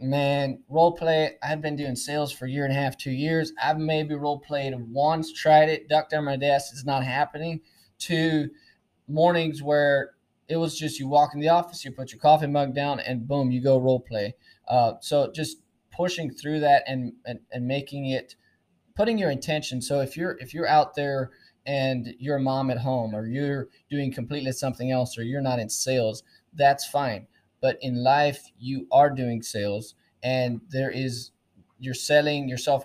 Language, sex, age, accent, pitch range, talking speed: English, male, 20-39, American, 125-145 Hz, 190 wpm